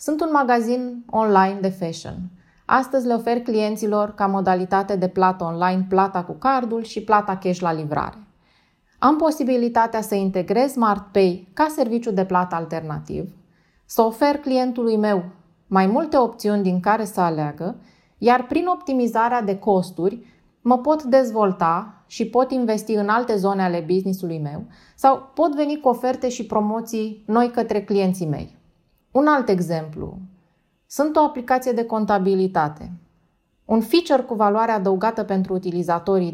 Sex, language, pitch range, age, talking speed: female, Romanian, 190-250 Hz, 20-39, 145 wpm